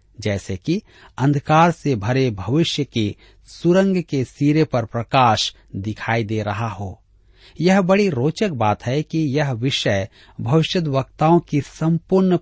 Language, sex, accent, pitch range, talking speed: Hindi, male, native, 105-155 Hz, 135 wpm